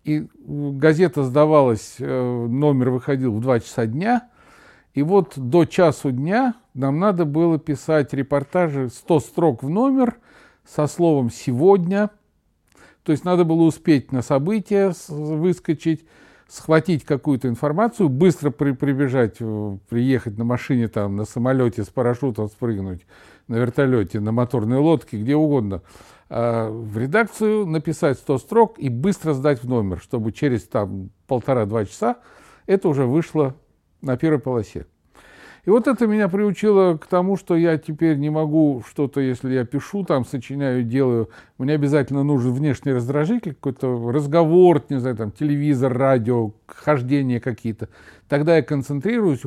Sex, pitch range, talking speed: male, 125-165 Hz, 135 wpm